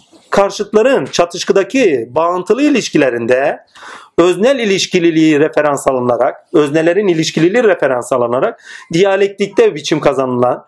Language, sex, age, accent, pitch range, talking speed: Turkish, male, 40-59, native, 155-225 Hz, 85 wpm